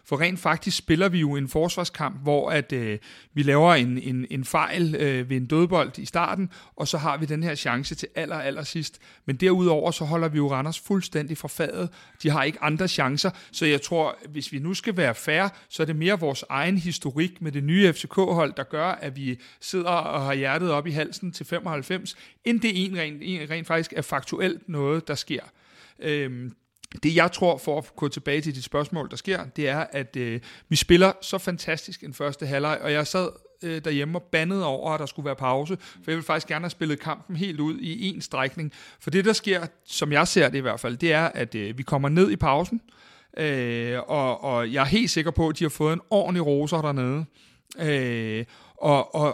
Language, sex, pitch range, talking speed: Danish, male, 145-175 Hz, 220 wpm